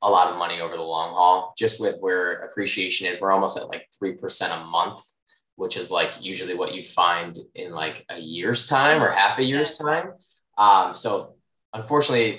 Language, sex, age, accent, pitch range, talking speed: English, male, 20-39, American, 95-130 Hz, 195 wpm